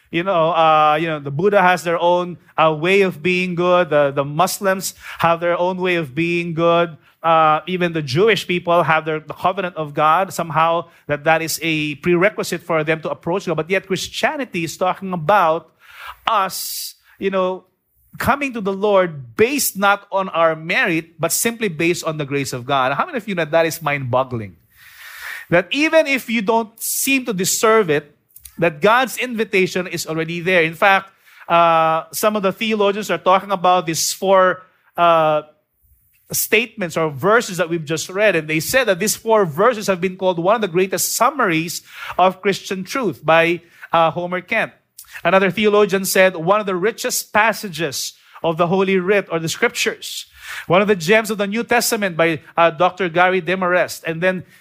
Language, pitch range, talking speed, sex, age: English, 165-200 Hz, 185 wpm, male, 30-49